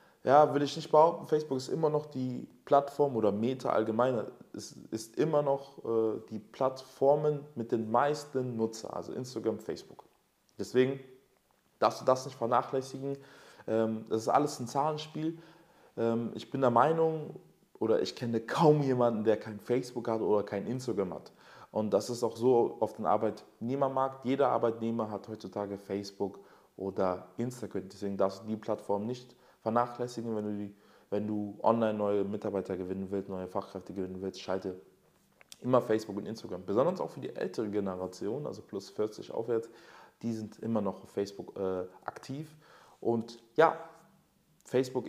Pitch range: 105-135 Hz